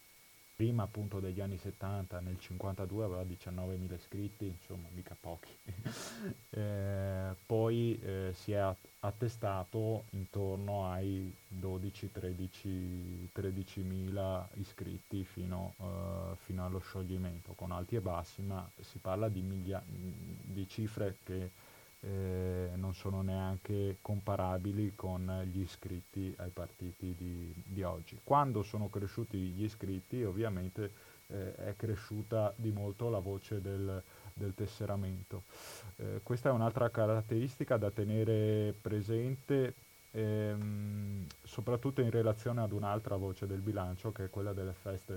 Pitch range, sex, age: 95-110 Hz, male, 30-49